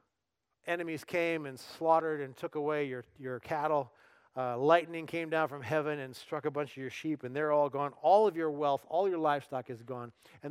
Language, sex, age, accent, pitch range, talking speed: English, male, 40-59, American, 135-165 Hz, 210 wpm